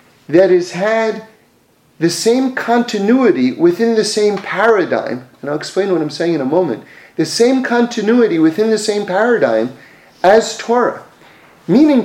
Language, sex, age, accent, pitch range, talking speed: English, male, 40-59, American, 180-245 Hz, 145 wpm